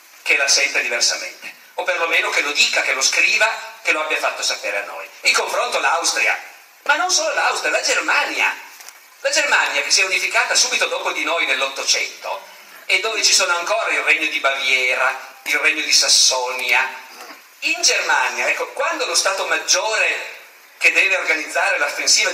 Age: 50-69